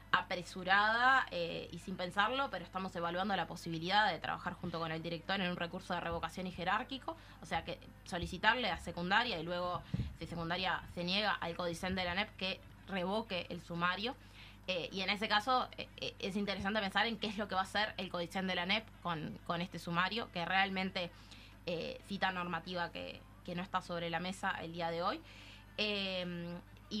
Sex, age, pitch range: female, 20-39, 170-200 Hz